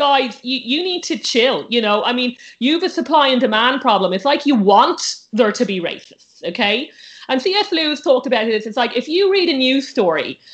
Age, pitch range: 40-59, 210-275 Hz